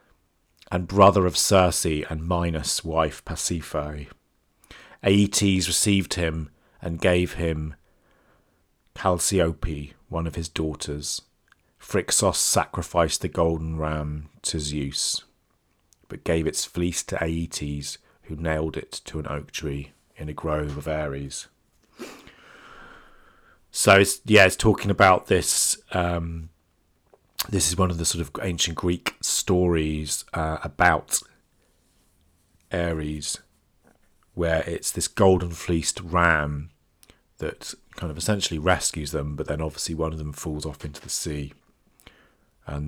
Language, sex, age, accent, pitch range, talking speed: English, male, 40-59, British, 75-95 Hz, 125 wpm